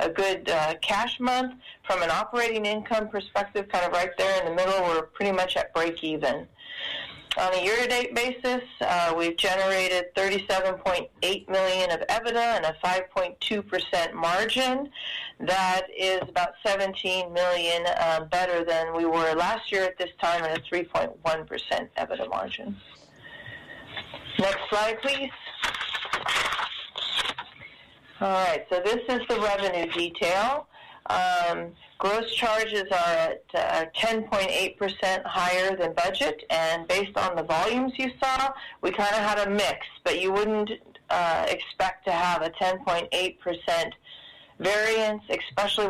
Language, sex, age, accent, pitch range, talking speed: English, female, 40-59, American, 170-215 Hz, 140 wpm